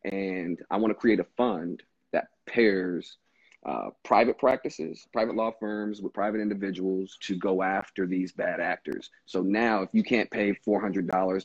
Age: 40-59